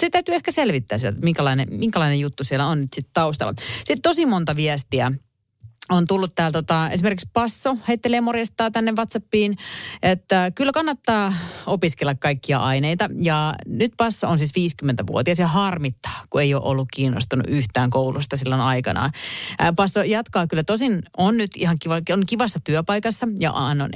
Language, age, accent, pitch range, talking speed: Finnish, 30-49, native, 130-190 Hz, 155 wpm